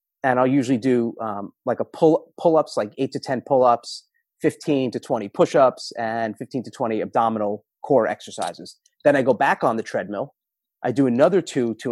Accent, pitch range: American, 125-155 Hz